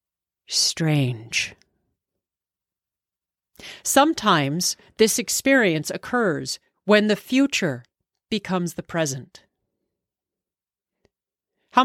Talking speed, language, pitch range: 60 wpm, English, 160-220 Hz